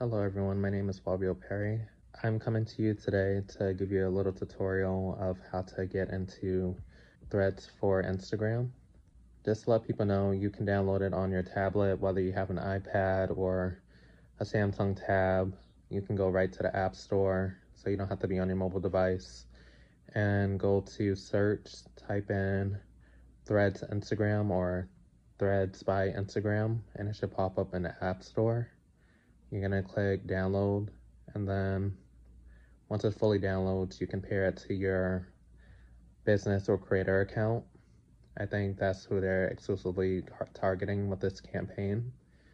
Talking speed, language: 165 wpm, English